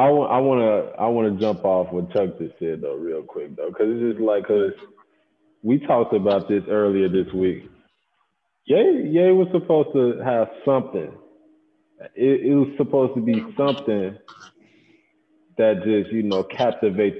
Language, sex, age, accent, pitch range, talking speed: English, male, 20-39, American, 110-185 Hz, 160 wpm